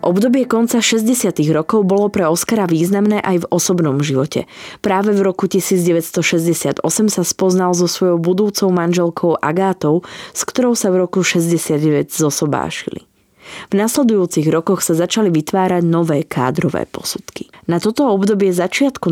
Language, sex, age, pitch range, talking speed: Slovak, female, 20-39, 165-205 Hz, 135 wpm